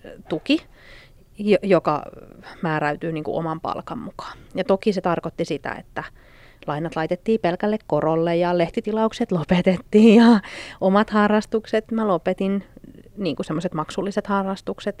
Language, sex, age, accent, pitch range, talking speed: Finnish, female, 30-49, native, 160-205 Hz, 120 wpm